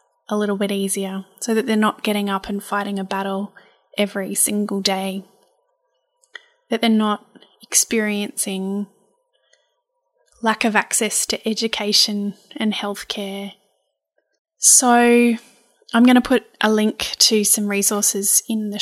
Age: 10-29